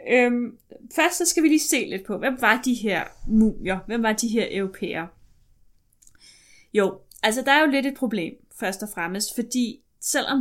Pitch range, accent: 200-250 Hz, native